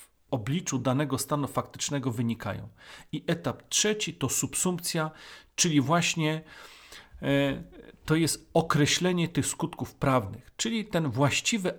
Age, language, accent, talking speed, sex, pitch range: 40-59, Polish, native, 105 wpm, male, 130-160 Hz